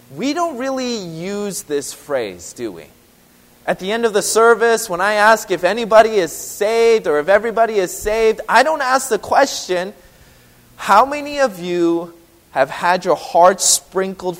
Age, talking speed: 30-49, 165 wpm